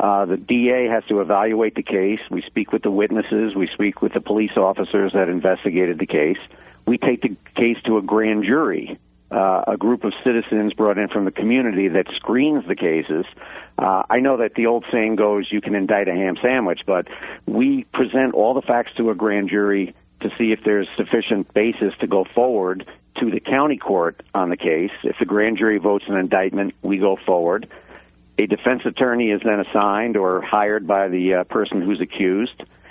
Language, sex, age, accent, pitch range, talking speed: English, male, 50-69, American, 95-115 Hz, 200 wpm